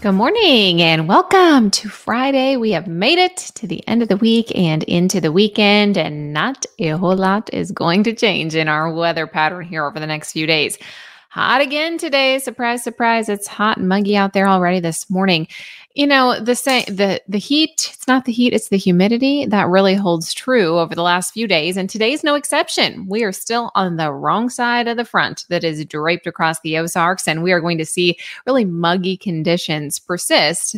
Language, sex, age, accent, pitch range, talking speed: English, female, 20-39, American, 170-235 Hz, 210 wpm